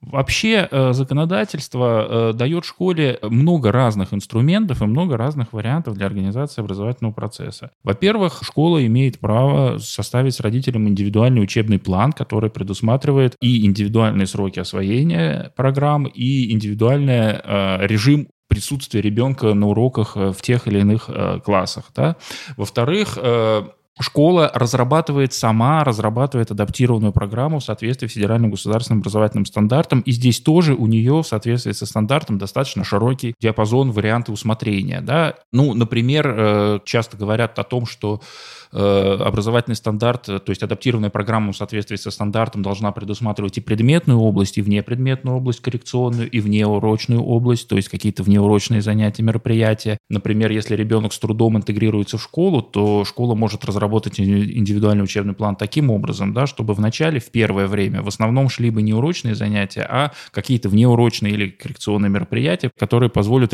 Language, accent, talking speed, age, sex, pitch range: Russian, native, 140 wpm, 20-39, male, 105-130 Hz